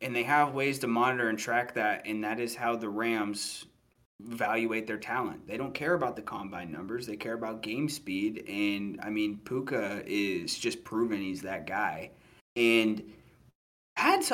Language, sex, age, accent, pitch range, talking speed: English, male, 20-39, American, 110-140 Hz, 175 wpm